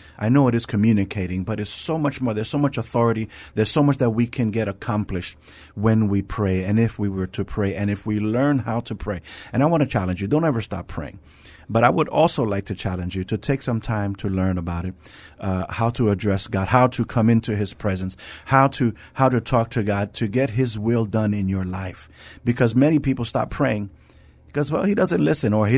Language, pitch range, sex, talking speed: English, 95-125 Hz, male, 235 wpm